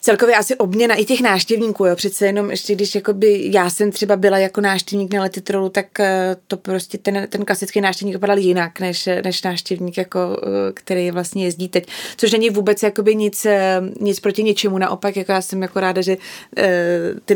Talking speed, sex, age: 180 wpm, female, 20-39